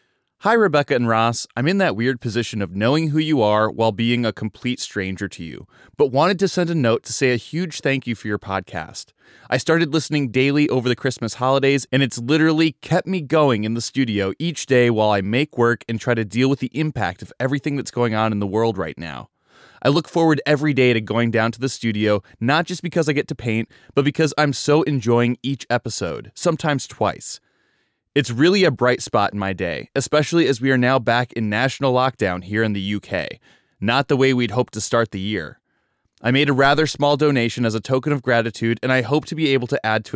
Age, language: 20-39, English